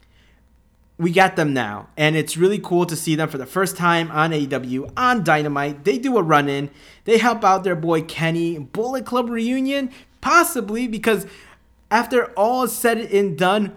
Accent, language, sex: American, English, male